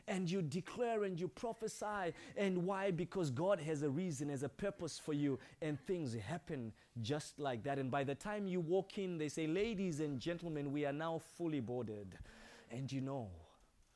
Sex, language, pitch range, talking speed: male, English, 115-160 Hz, 190 wpm